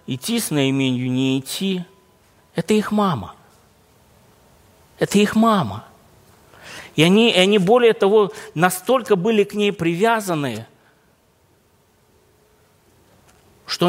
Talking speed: 95 wpm